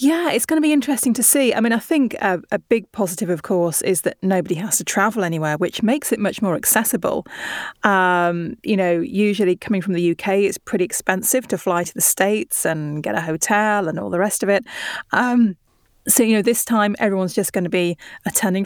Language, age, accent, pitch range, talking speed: English, 30-49, British, 175-225 Hz, 220 wpm